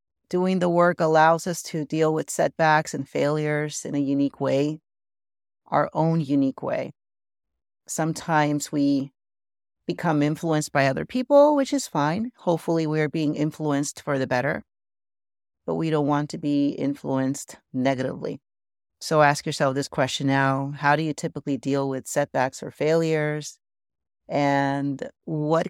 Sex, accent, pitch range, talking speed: female, American, 135-155 Hz, 140 wpm